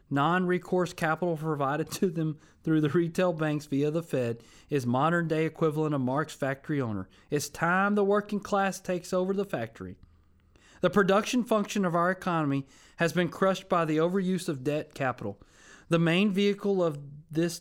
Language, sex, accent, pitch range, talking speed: English, male, American, 135-180 Hz, 165 wpm